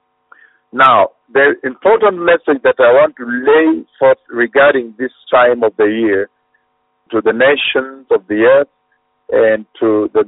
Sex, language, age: male, English, 50-69